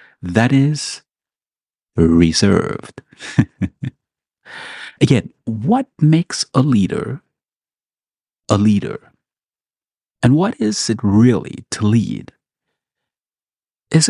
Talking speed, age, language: 75 wpm, 50-69, English